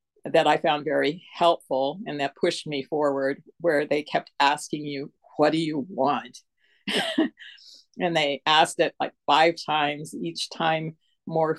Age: 50-69